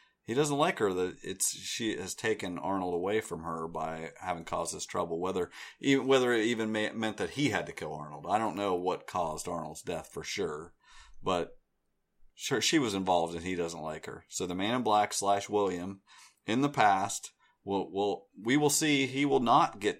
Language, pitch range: English, 90-120 Hz